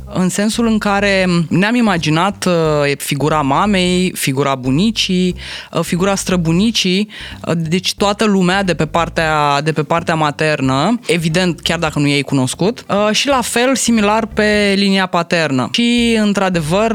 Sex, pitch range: female, 150-200 Hz